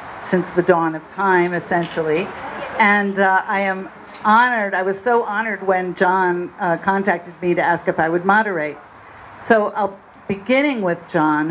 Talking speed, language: 160 wpm, English